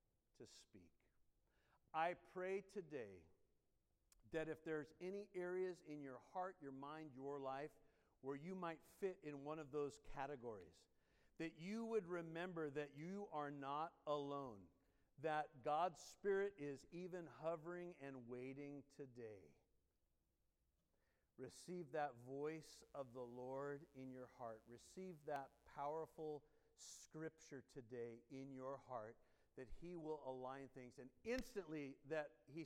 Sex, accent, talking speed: male, American, 130 wpm